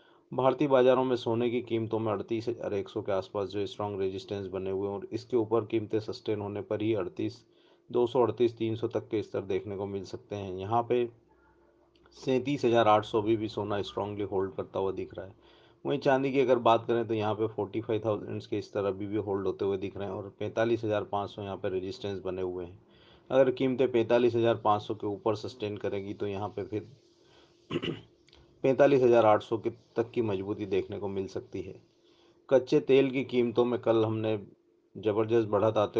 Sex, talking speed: male, 165 wpm